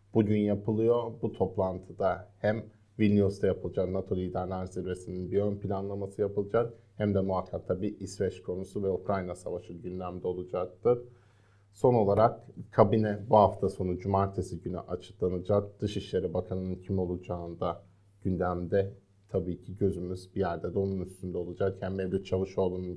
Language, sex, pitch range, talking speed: Turkish, male, 90-105 Hz, 135 wpm